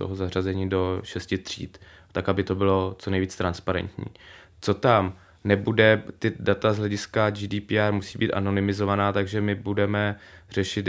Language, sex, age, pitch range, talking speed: Czech, male, 20-39, 95-105 Hz, 150 wpm